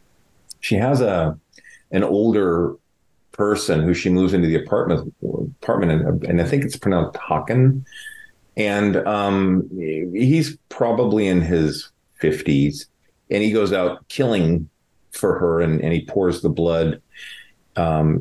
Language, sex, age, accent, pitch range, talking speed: English, male, 40-59, American, 75-100 Hz, 135 wpm